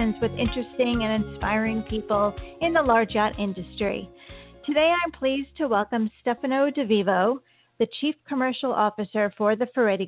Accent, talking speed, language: American, 150 wpm, English